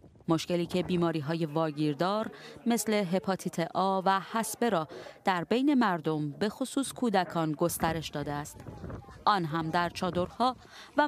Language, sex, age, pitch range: English, female, 30-49, 170-230 Hz